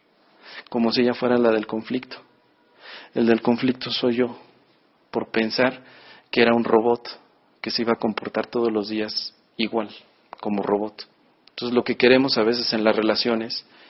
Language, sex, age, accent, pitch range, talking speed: Spanish, male, 40-59, Mexican, 105-125 Hz, 165 wpm